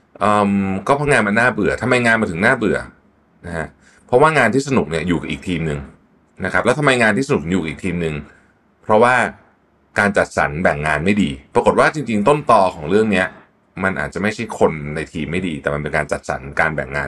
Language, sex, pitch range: Thai, male, 75-110 Hz